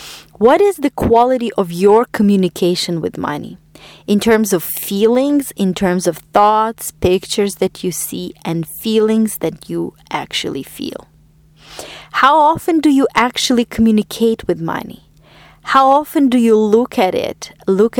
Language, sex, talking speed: English, female, 145 wpm